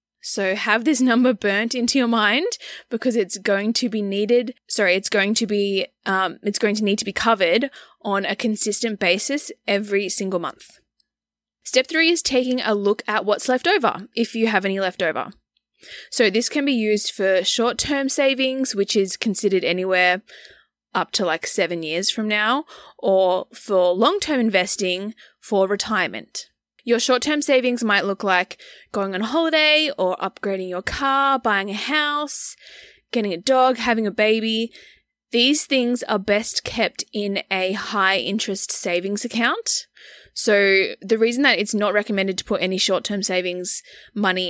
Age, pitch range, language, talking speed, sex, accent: 20-39, 195-250 Hz, English, 165 wpm, female, Australian